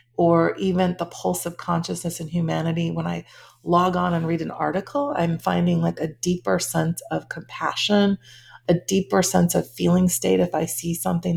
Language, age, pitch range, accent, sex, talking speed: English, 30-49, 165-200 Hz, American, female, 180 wpm